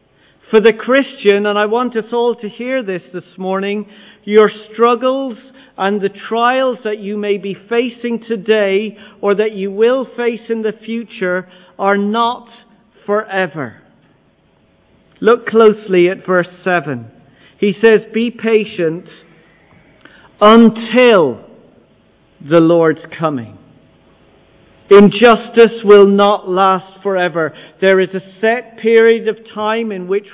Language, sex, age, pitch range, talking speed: English, male, 40-59, 165-215 Hz, 125 wpm